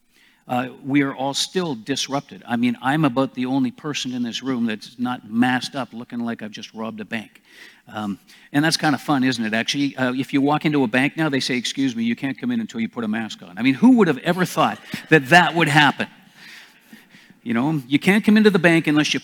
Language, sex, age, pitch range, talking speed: English, male, 50-69, 130-215 Hz, 245 wpm